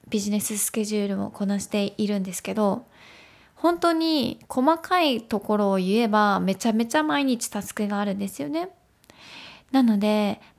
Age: 20-39